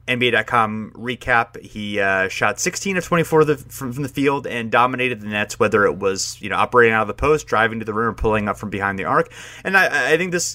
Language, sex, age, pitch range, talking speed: English, male, 30-49, 100-125 Hz, 245 wpm